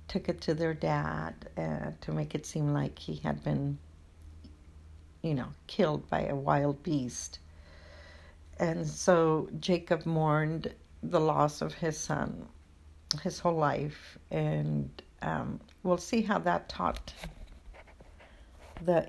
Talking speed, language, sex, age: 130 wpm, English, female, 60-79